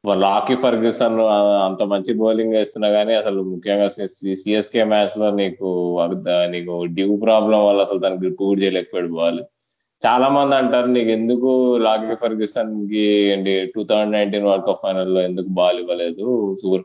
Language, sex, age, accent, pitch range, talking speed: Telugu, male, 20-39, native, 95-110 Hz, 150 wpm